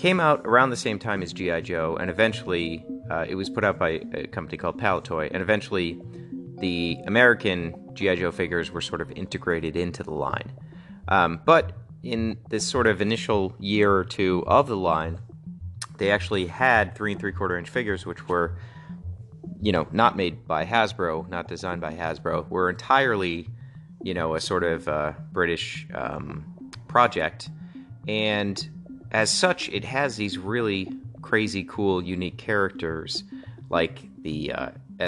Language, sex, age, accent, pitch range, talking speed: English, male, 30-49, American, 85-120 Hz, 160 wpm